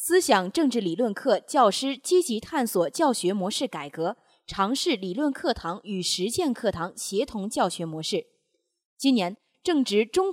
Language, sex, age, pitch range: Chinese, female, 20-39, 190-295 Hz